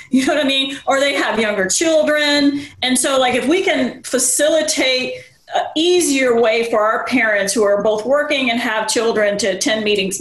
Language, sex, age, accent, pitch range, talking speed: English, female, 40-59, American, 225-275 Hz, 195 wpm